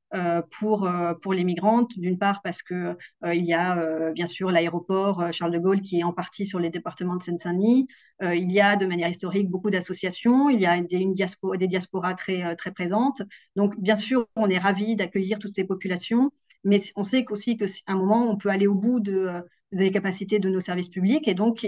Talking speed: 210 wpm